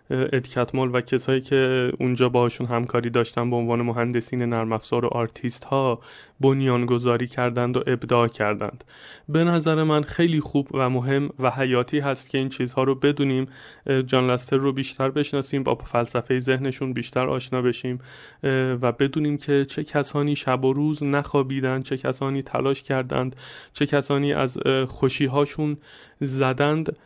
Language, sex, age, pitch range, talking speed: Persian, male, 30-49, 125-150 Hz, 140 wpm